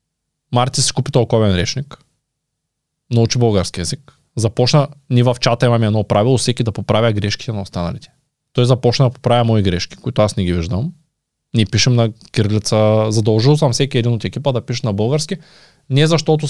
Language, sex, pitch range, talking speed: Bulgarian, male, 110-140 Hz, 175 wpm